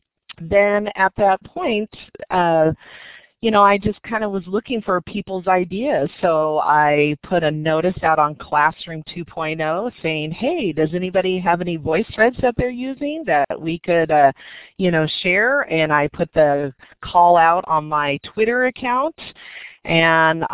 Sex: female